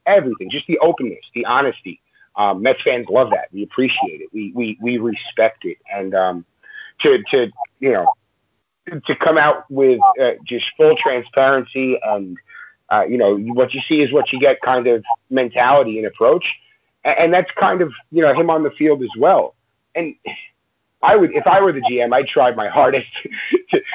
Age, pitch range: 30-49, 115-180 Hz